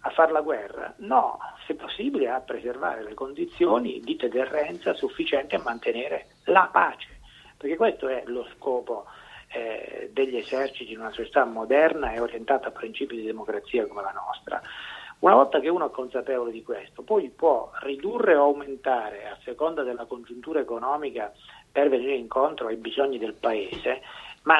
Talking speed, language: 155 wpm, Italian